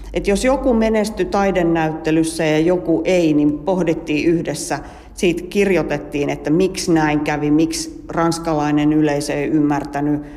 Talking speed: 125 wpm